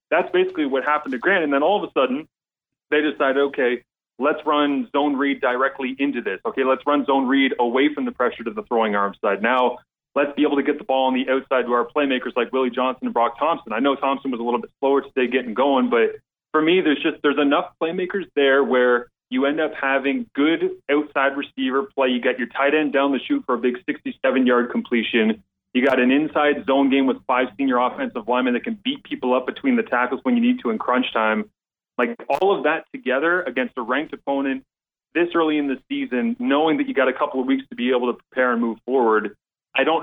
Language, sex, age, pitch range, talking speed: English, male, 30-49, 125-150 Hz, 235 wpm